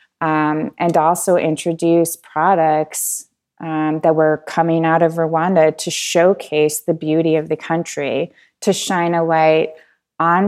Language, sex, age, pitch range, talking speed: English, female, 20-39, 155-165 Hz, 135 wpm